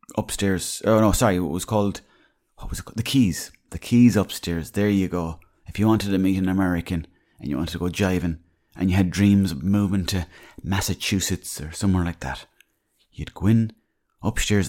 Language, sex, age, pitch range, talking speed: English, male, 30-49, 90-105 Hz, 195 wpm